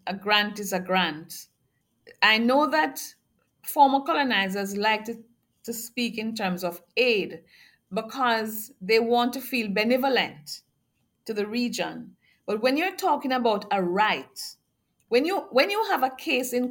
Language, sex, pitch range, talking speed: English, female, 195-260 Hz, 150 wpm